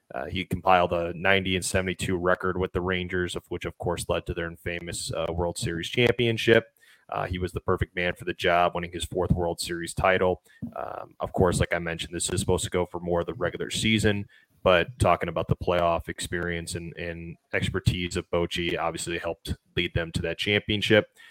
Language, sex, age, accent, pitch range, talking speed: English, male, 20-39, American, 85-100 Hz, 205 wpm